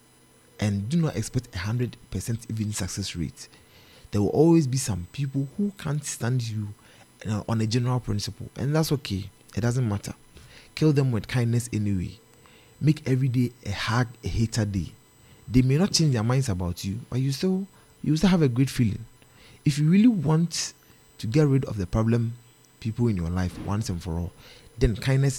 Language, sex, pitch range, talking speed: English, male, 95-130 Hz, 185 wpm